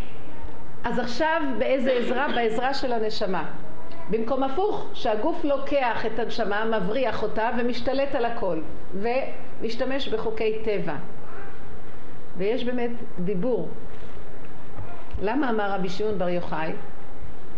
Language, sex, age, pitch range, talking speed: Hebrew, female, 50-69, 190-260 Hz, 100 wpm